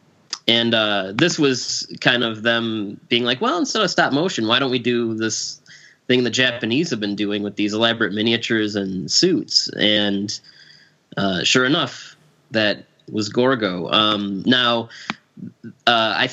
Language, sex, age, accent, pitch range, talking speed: English, male, 20-39, American, 105-125 Hz, 155 wpm